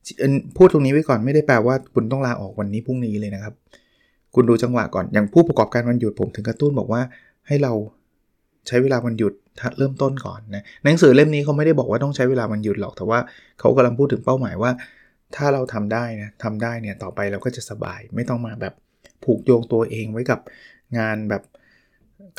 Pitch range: 105-130 Hz